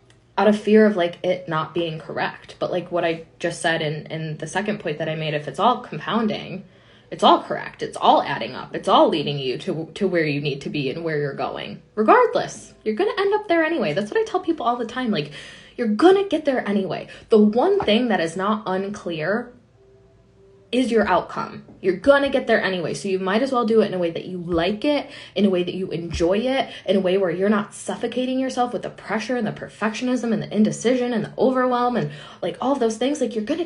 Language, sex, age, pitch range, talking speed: English, female, 10-29, 170-255 Hz, 240 wpm